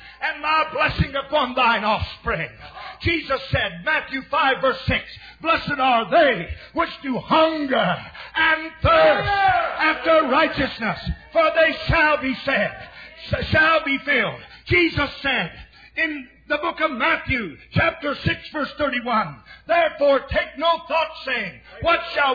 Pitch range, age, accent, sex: 275-330 Hz, 50-69, American, male